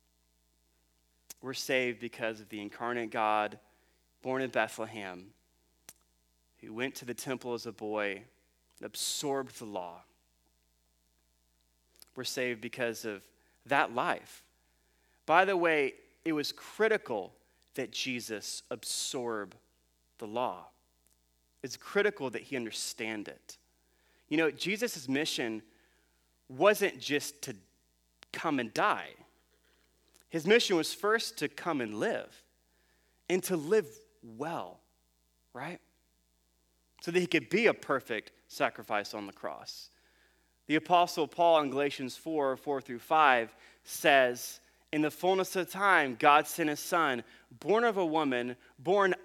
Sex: male